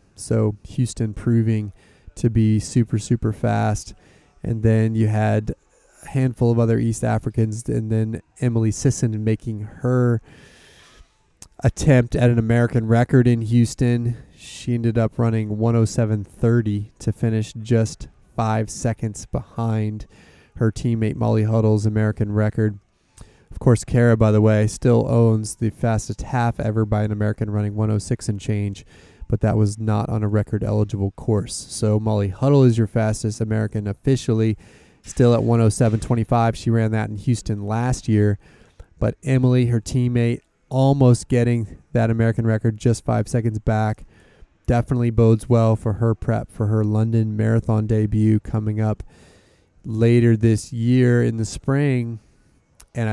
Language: English